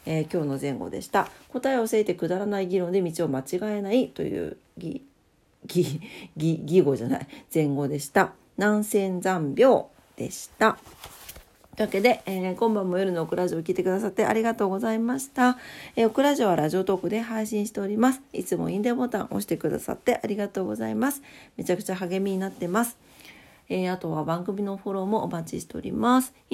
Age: 40-59